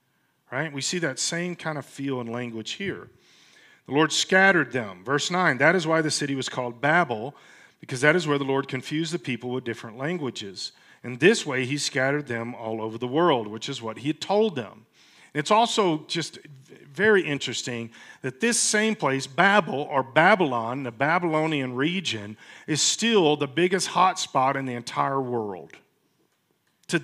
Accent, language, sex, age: American, English, male, 40-59